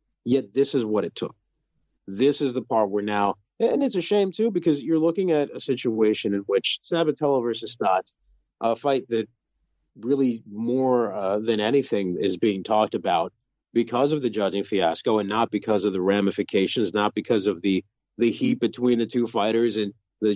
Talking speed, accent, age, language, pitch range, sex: 185 wpm, American, 30-49, English, 105-150 Hz, male